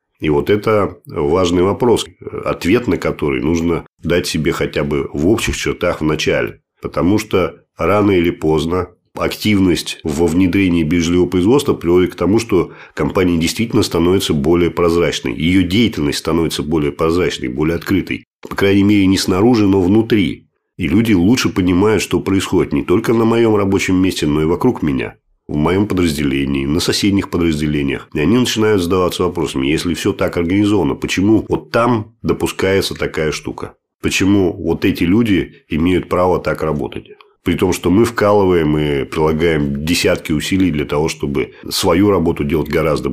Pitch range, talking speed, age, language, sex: 80-100 Hz, 155 wpm, 40-59, Russian, male